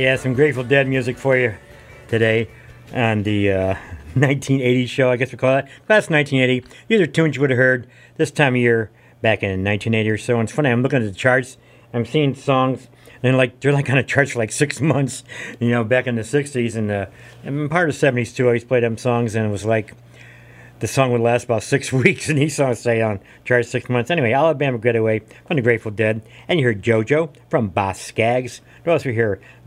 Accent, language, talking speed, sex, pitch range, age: American, English, 235 wpm, male, 110-130 Hz, 50-69